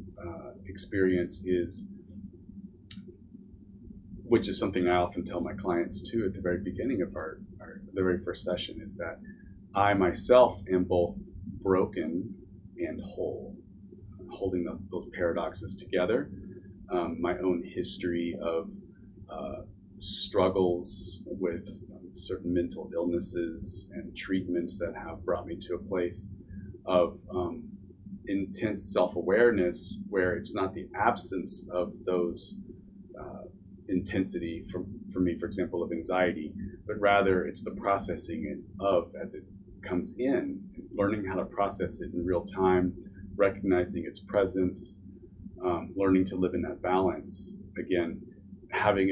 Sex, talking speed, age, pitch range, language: male, 130 wpm, 30-49, 90-100 Hz, English